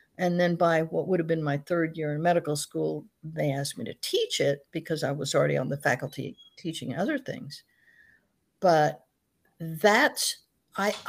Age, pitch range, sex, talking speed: 60-79, 170-225 Hz, female, 175 wpm